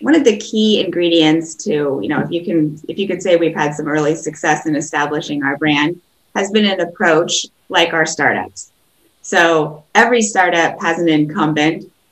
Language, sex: English, female